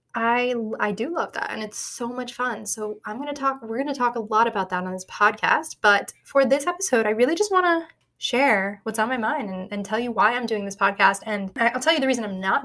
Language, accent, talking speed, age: English, American, 270 wpm, 10-29